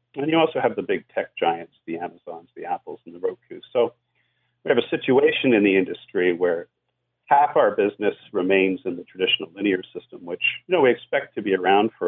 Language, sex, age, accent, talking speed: English, male, 50-69, American, 200 wpm